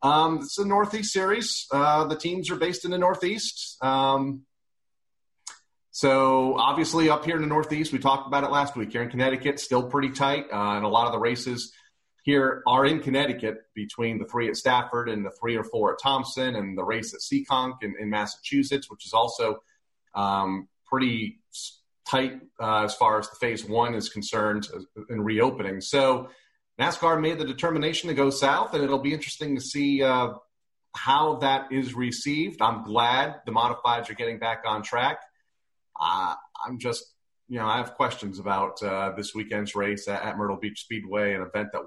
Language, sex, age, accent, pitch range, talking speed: English, male, 40-59, American, 110-145 Hz, 185 wpm